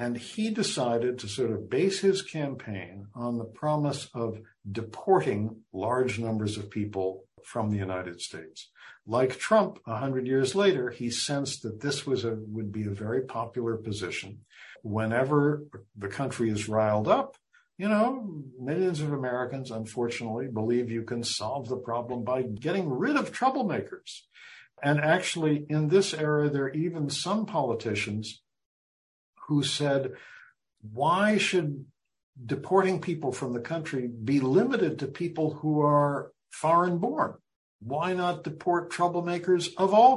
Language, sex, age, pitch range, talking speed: English, male, 60-79, 110-150 Hz, 145 wpm